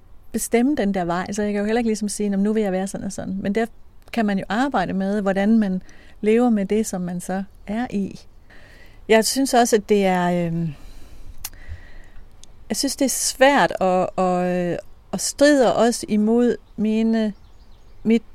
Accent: native